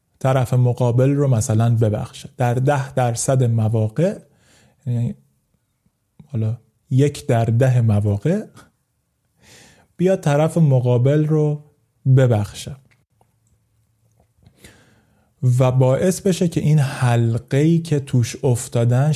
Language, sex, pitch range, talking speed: English, male, 115-150 Hz, 90 wpm